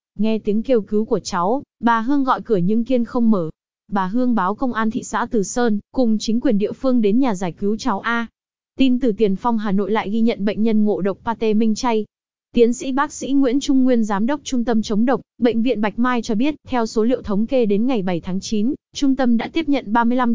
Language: Vietnamese